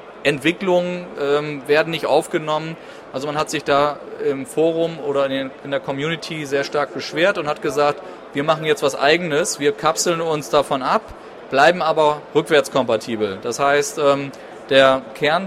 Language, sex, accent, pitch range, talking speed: German, male, German, 140-165 Hz, 155 wpm